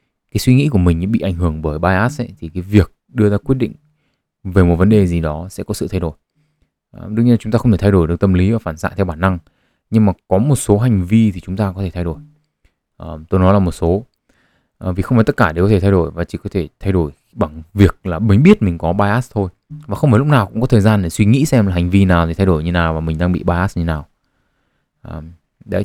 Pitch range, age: 90-110 Hz, 20-39